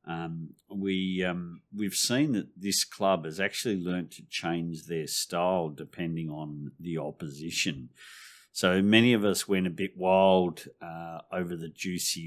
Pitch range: 80-95 Hz